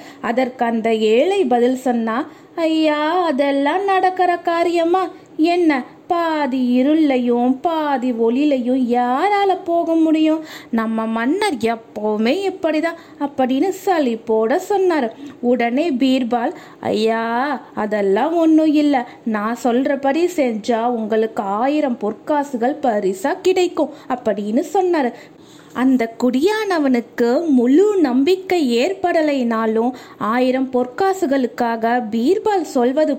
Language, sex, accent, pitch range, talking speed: Tamil, female, native, 235-335 Hz, 80 wpm